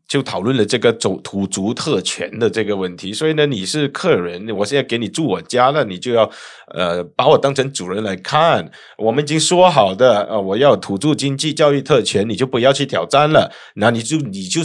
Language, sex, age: Chinese, male, 20-39